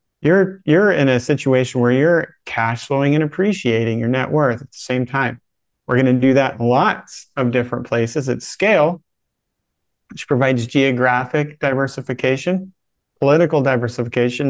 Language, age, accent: English, 30-49, American